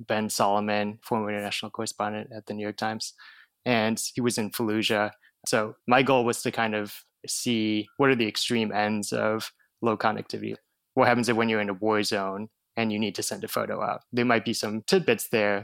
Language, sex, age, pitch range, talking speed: English, male, 20-39, 105-120 Hz, 205 wpm